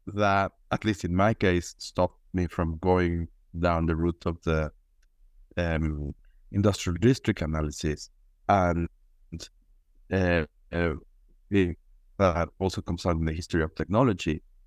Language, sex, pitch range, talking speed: English, male, 85-100 Hz, 125 wpm